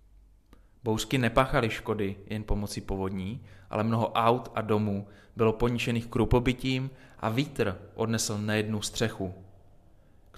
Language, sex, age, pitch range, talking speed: Czech, male, 20-39, 100-120 Hz, 115 wpm